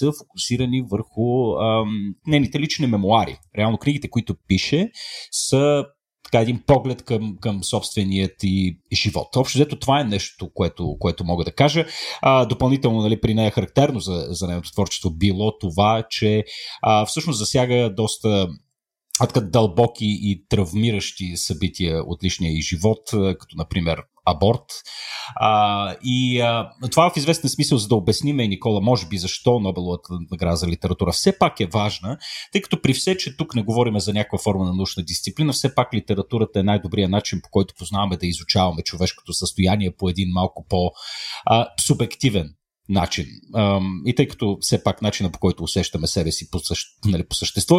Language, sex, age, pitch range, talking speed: Bulgarian, male, 40-59, 95-120 Hz, 160 wpm